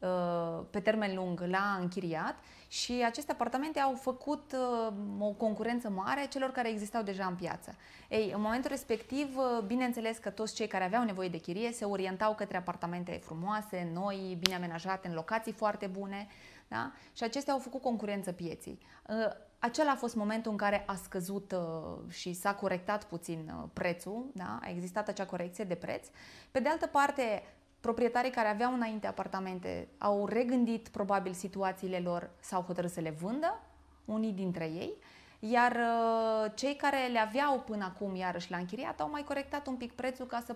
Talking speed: 160 wpm